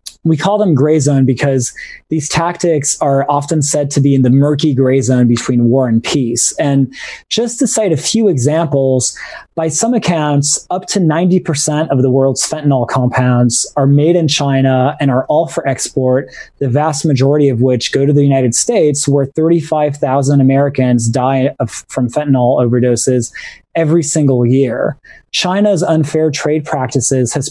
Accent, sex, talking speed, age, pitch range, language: American, male, 160 wpm, 20-39, 130-155 Hz, English